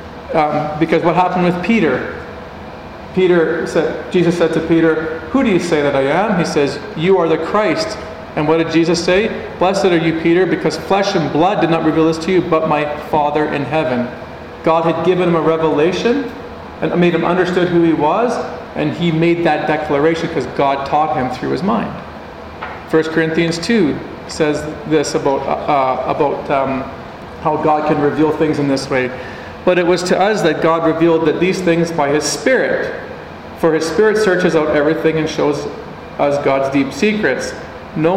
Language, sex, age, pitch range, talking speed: English, male, 40-59, 155-180 Hz, 185 wpm